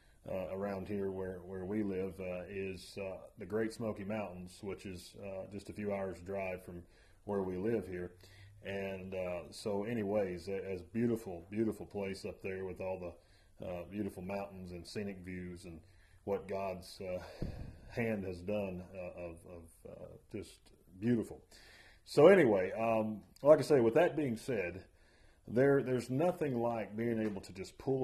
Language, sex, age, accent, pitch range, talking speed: English, male, 40-59, American, 90-110 Hz, 170 wpm